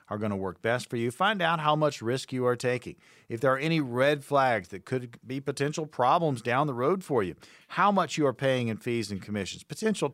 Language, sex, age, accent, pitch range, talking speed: English, male, 40-59, American, 115-150 Hz, 245 wpm